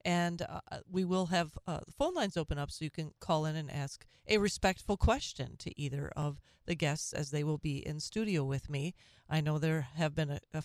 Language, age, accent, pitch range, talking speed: English, 40-59, American, 140-175 Hz, 225 wpm